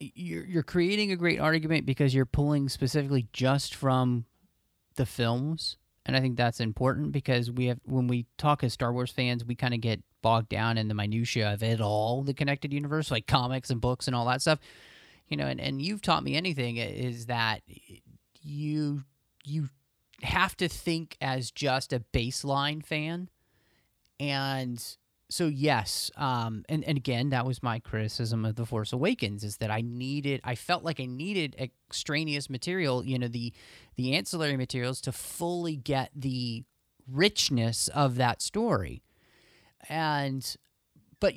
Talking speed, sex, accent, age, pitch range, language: 165 wpm, male, American, 30-49, 120-150 Hz, English